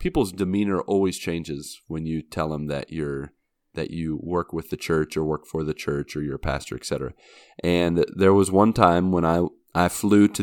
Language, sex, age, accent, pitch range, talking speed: English, male, 30-49, American, 80-90 Hz, 205 wpm